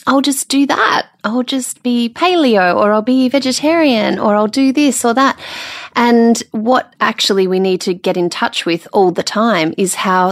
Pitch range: 185-250 Hz